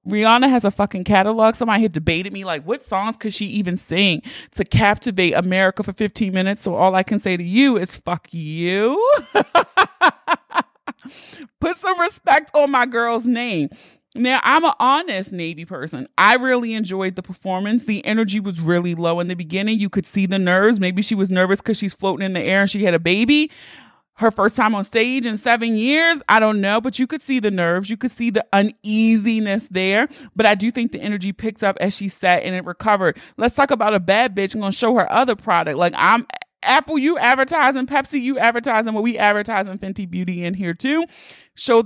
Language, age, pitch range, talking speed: English, 30-49, 185-235 Hz, 210 wpm